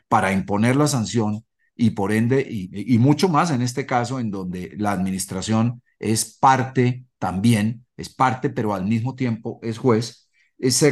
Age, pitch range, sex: 40-59, 115-145 Hz, male